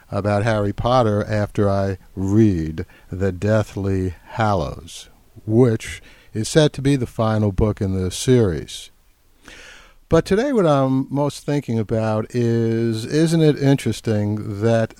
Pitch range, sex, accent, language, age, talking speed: 105-130 Hz, male, American, English, 60-79, 130 wpm